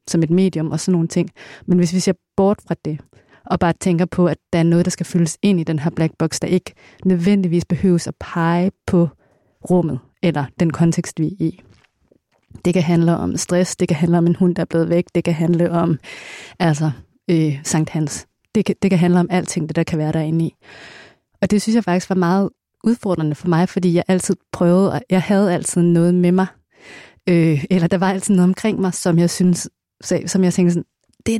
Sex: female